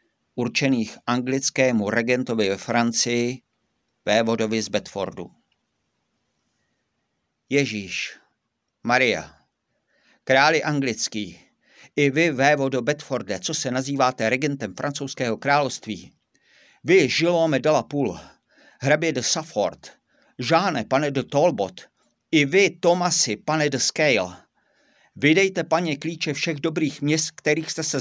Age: 50-69